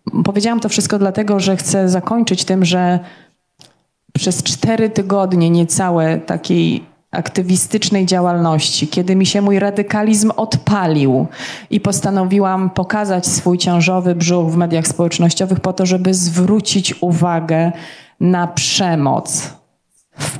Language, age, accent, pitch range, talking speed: Polish, 20-39, native, 160-200 Hz, 115 wpm